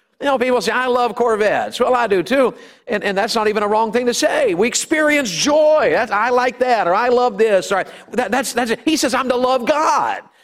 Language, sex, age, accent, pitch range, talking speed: English, male, 50-69, American, 180-255 Hz, 255 wpm